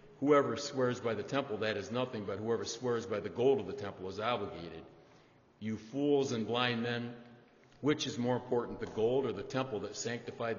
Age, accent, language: 60-79, American, English